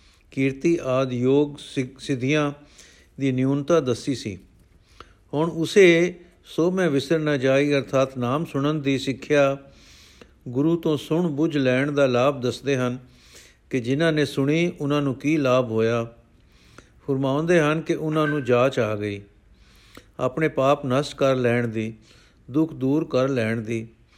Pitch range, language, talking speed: 125-160 Hz, Punjabi, 135 wpm